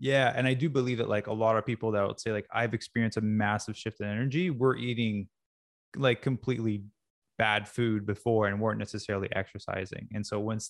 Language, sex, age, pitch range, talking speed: English, male, 20-39, 105-120 Hz, 200 wpm